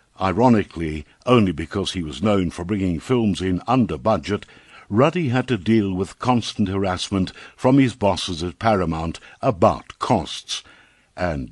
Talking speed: 140 wpm